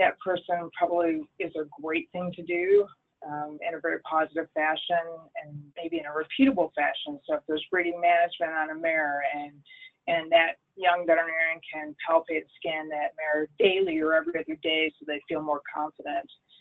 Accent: American